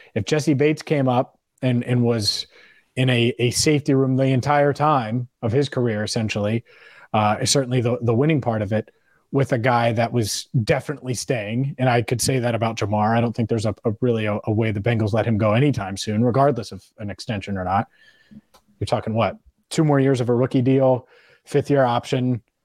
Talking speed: 205 wpm